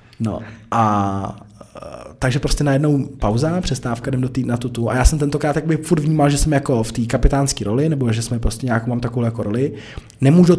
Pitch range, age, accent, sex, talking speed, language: 105-125 Hz, 20-39, native, male, 210 wpm, Czech